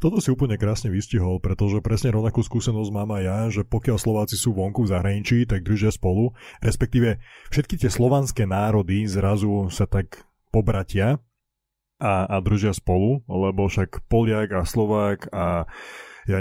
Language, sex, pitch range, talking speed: Slovak, male, 95-115 Hz, 155 wpm